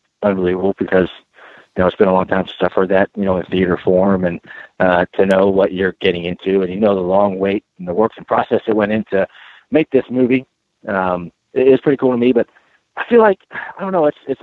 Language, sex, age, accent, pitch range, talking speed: English, male, 40-59, American, 100-120 Hz, 235 wpm